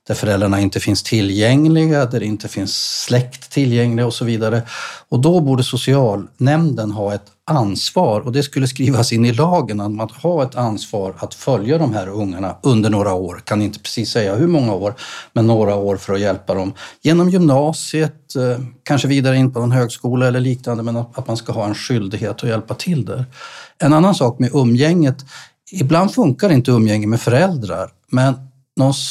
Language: Swedish